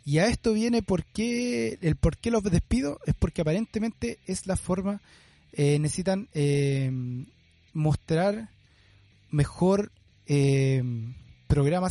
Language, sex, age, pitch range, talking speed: English, male, 30-49, 125-165 Hz, 110 wpm